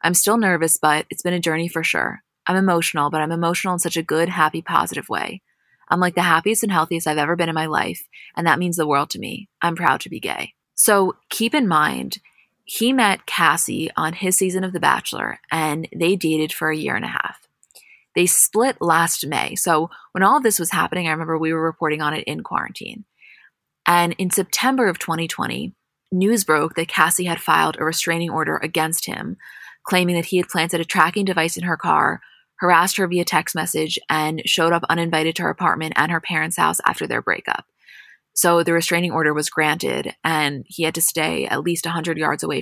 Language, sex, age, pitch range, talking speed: English, female, 20-39, 155-185 Hz, 210 wpm